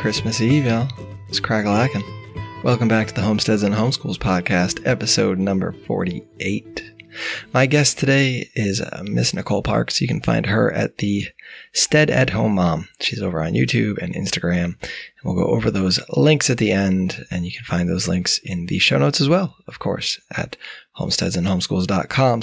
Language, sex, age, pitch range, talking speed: English, male, 20-39, 100-130 Hz, 175 wpm